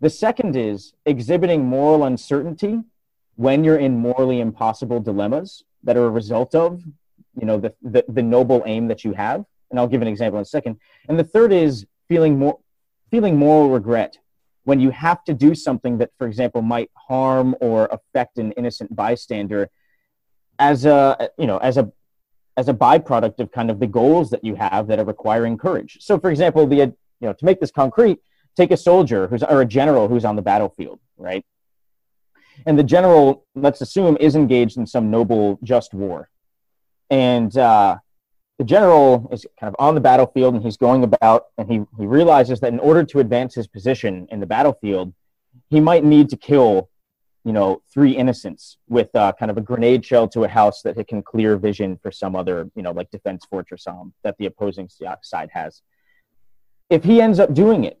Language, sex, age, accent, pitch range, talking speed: English, male, 30-49, American, 110-150 Hz, 190 wpm